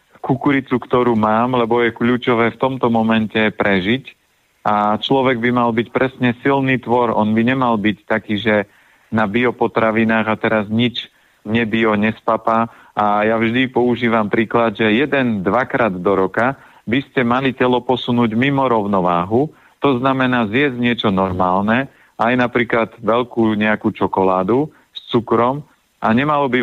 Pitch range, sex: 110-125 Hz, male